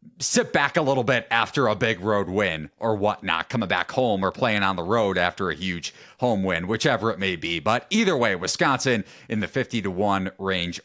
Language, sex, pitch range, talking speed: English, male, 115-155 Hz, 215 wpm